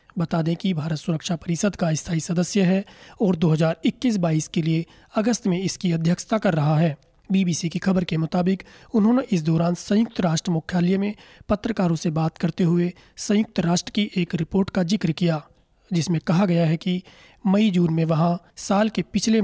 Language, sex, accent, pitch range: Hindi, male, native, 165-195 Hz